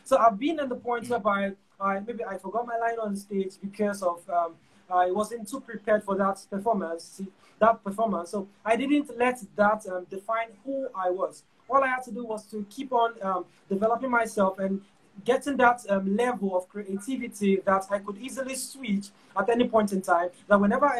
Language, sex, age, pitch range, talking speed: English, male, 20-39, 195-240 Hz, 200 wpm